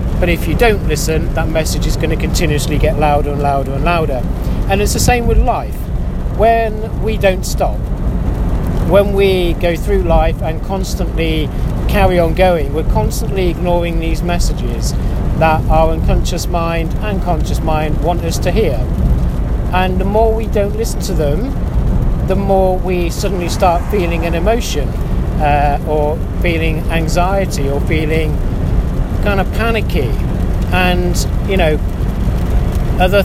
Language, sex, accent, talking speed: English, male, British, 150 wpm